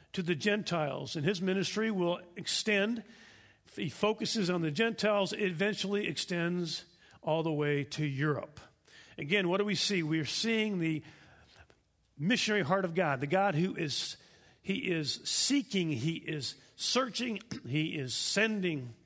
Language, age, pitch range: English, 50-69, 150-195 Hz